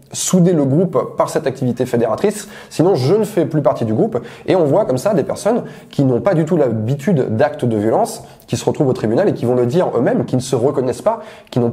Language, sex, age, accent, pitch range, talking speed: French, male, 20-39, French, 125-165 Hz, 250 wpm